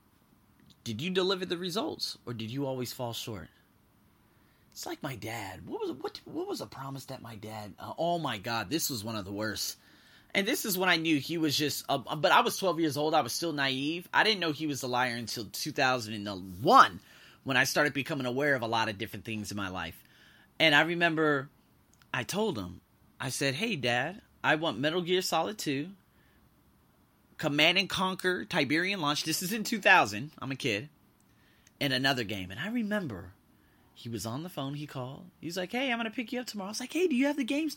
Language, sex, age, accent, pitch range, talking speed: English, male, 30-49, American, 115-180 Hz, 220 wpm